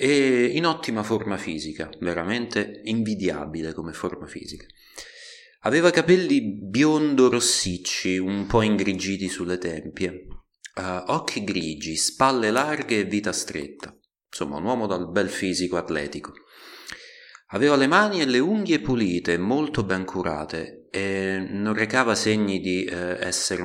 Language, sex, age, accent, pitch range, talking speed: Italian, male, 30-49, native, 90-120 Hz, 125 wpm